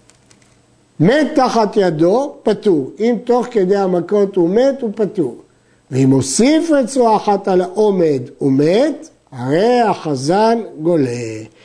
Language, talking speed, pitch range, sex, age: Hebrew, 115 wpm, 170-235 Hz, male, 60-79